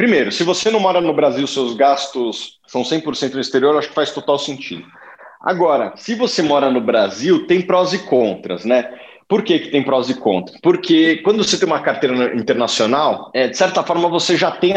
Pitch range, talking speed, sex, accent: 130-180 Hz, 205 wpm, male, Brazilian